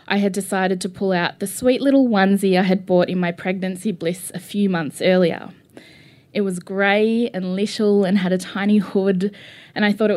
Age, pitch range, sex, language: 20-39, 180-215 Hz, female, English